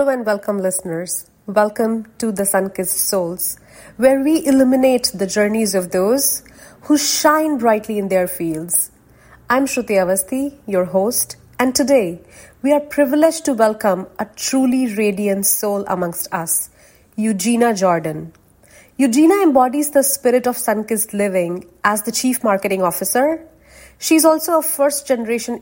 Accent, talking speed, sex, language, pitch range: Indian, 135 wpm, female, English, 190-265 Hz